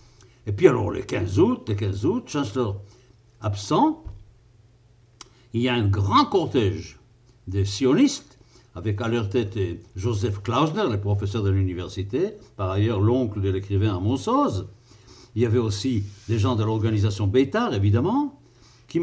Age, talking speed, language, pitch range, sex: 60-79, 150 wpm, French, 105-130 Hz, male